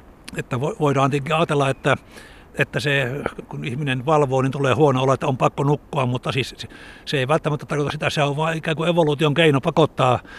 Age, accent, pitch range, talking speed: 60-79, native, 130-150 Hz, 190 wpm